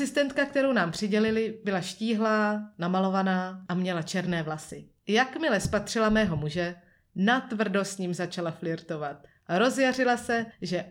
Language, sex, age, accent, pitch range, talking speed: Czech, female, 30-49, native, 185-240 Hz, 125 wpm